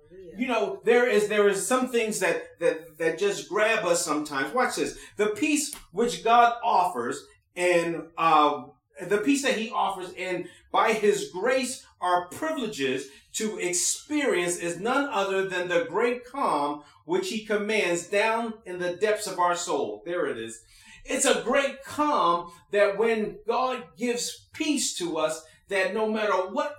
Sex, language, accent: male, English, American